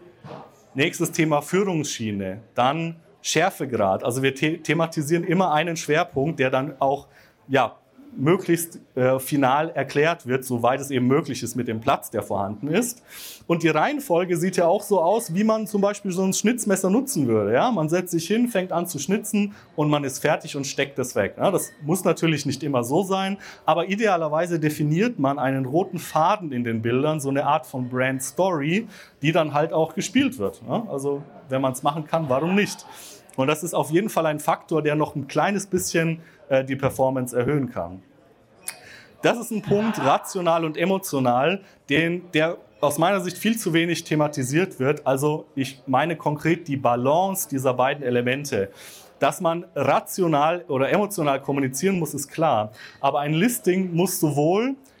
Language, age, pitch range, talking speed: German, 30-49, 135-180 Hz, 175 wpm